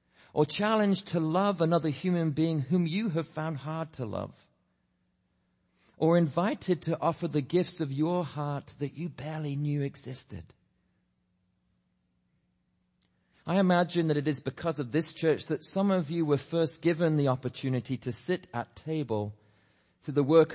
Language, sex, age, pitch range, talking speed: English, male, 40-59, 125-165 Hz, 155 wpm